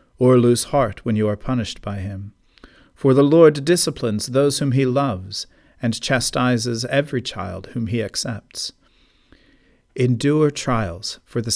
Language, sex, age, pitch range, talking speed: English, male, 40-59, 110-140 Hz, 145 wpm